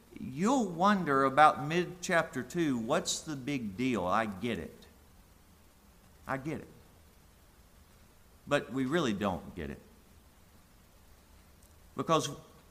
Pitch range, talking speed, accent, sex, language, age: 110-160 Hz, 105 wpm, American, male, English, 50-69